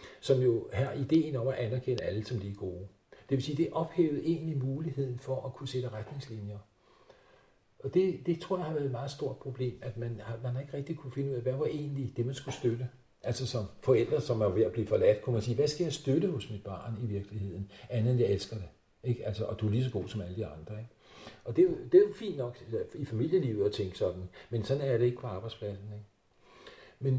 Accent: native